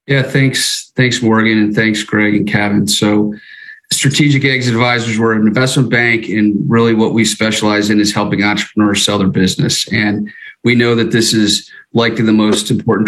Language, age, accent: English, 40-59, American